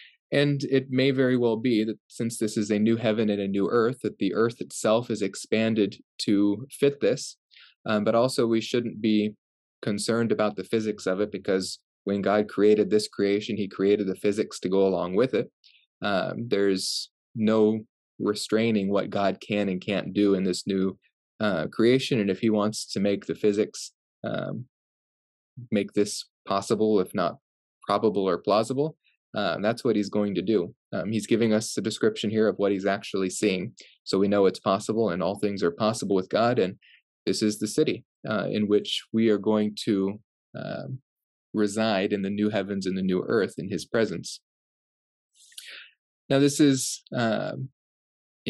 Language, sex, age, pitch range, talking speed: English, male, 20-39, 100-115 Hz, 180 wpm